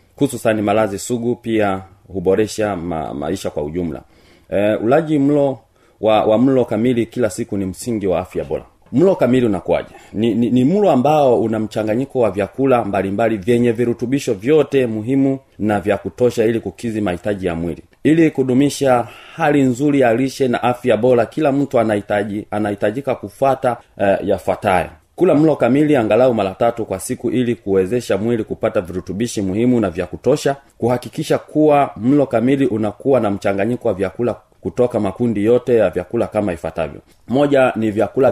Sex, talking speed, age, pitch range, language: male, 155 wpm, 40-59, 100-125 Hz, Swahili